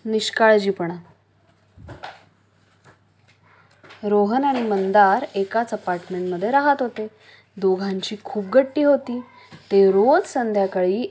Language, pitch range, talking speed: English, 180-240 Hz, 95 wpm